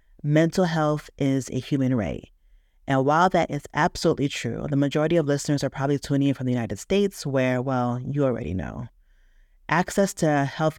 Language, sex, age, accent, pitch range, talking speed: English, female, 30-49, American, 130-155 Hz, 180 wpm